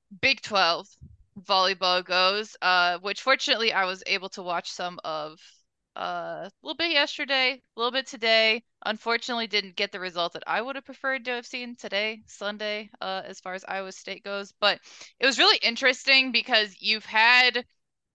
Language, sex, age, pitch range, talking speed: English, female, 20-39, 185-230 Hz, 175 wpm